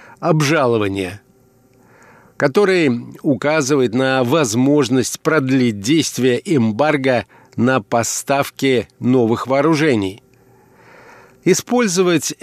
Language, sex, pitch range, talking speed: Russian, male, 125-165 Hz, 65 wpm